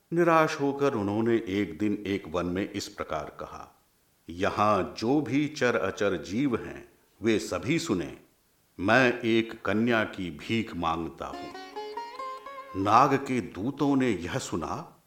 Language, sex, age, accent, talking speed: Hindi, male, 50-69, native, 135 wpm